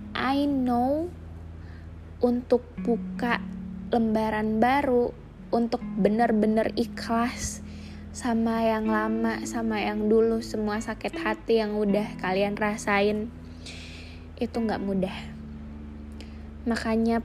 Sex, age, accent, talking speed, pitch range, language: female, 10-29, native, 90 wpm, 200-250 Hz, Indonesian